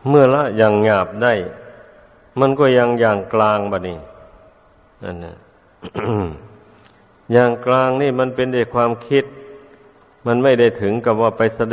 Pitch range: 100-115 Hz